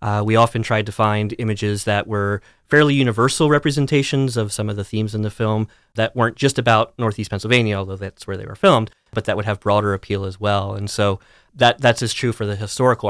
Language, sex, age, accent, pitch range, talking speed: English, male, 30-49, American, 105-120 Hz, 225 wpm